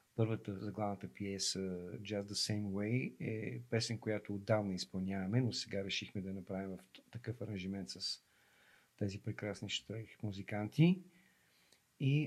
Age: 50-69